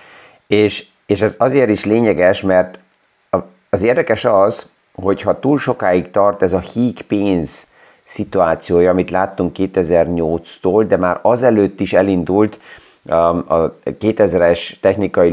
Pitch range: 90-105 Hz